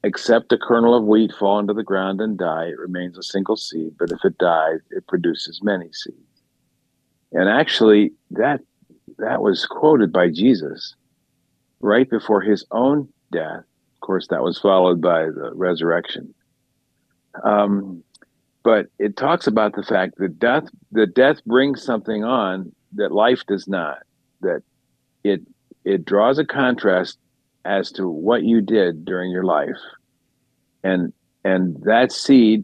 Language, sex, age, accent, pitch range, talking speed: English, male, 50-69, American, 90-110 Hz, 150 wpm